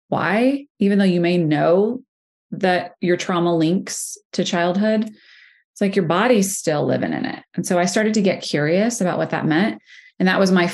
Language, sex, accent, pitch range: English, female, American, 160-190 Hz